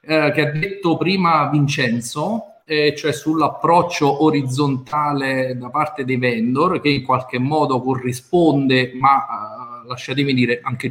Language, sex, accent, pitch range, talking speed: Italian, male, native, 130-150 Hz, 125 wpm